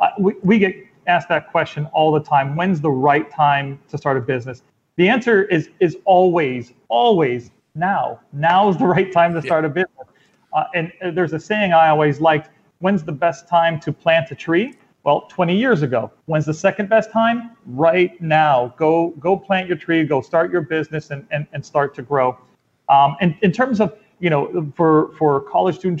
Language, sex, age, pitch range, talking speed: English, male, 30-49, 150-180 Hz, 200 wpm